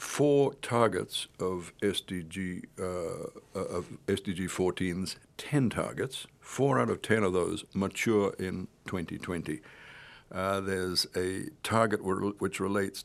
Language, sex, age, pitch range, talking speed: English, male, 60-79, 90-105 Hz, 115 wpm